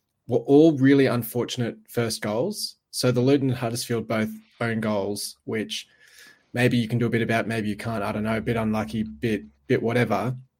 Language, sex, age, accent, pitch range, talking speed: English, male, 20-39, Australian, 110-130 Hz, 190 wpm